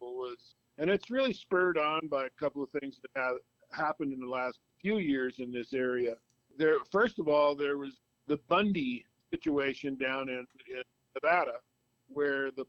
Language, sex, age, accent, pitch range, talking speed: English, male, 50-69, American, 125-160 Hz, 175 wpm